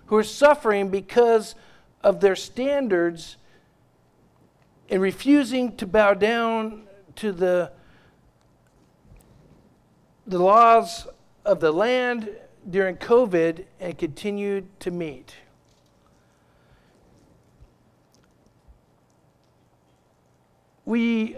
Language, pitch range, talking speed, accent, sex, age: English, 185-235 Hz, 75 wpm, American, male, 50-69